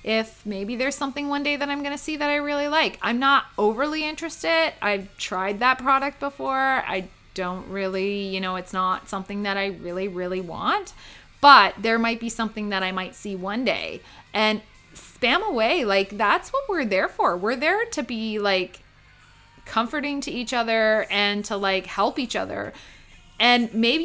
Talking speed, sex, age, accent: 180 wpm, female, 30-49, American